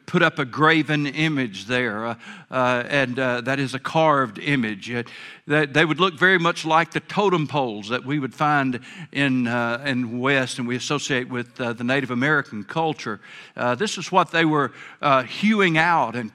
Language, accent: English, American